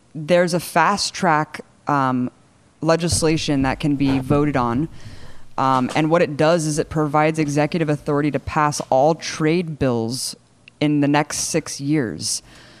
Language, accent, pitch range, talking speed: English, American, 140-170 Hz, 145 wpm